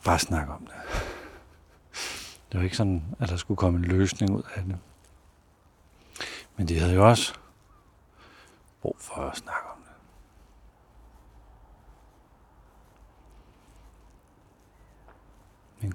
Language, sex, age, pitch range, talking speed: Danish, male, 60-79, 80-95 Hz, 110 wpm